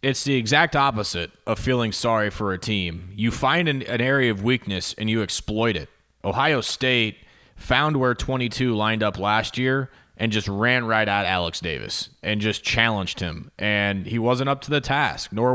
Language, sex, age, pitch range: English, male, 30-49, 105-135 Hz